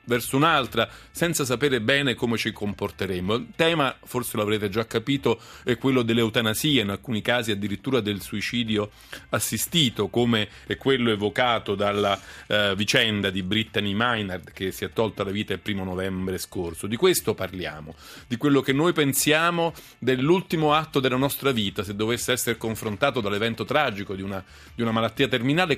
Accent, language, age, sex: native, Italian, 40-59, male